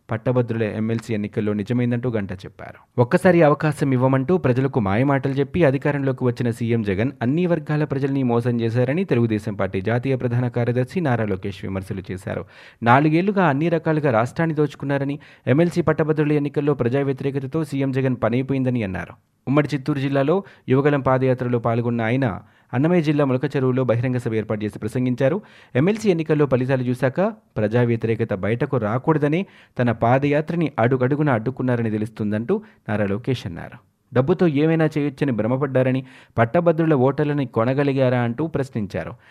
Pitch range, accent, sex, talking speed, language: 115-145 Hz, native, male, 125 wpm, Telugu